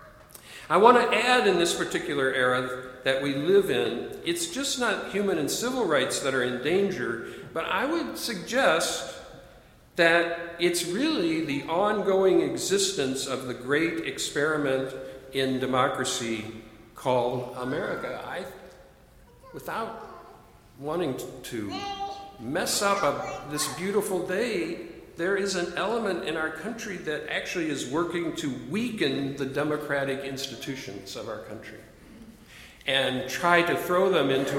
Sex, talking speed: male, 130 wpm